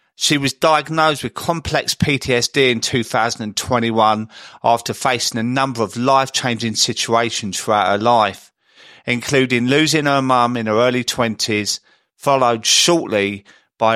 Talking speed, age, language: 125 wpm, 40-59, English